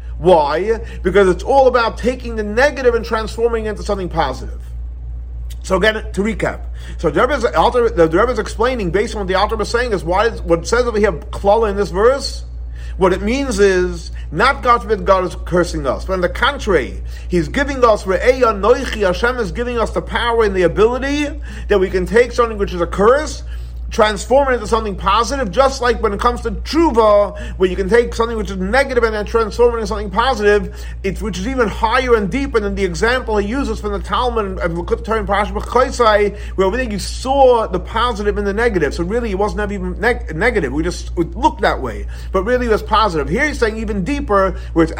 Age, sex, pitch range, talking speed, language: 40-59, male, 180-235 Hz, 210 wpm, English